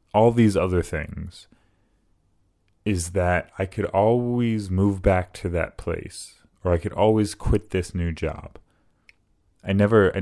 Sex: male